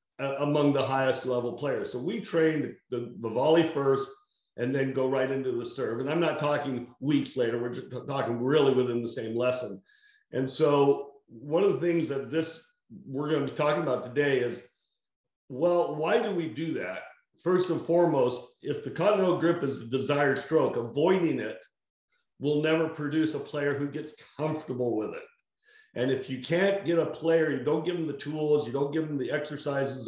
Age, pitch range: 60-79, 130-165 Hz